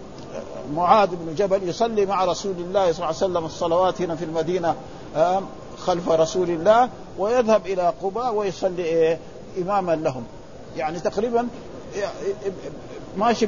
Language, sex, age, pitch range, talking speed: Arabic, male, 50-69, 170-210 Hz, 120 wpm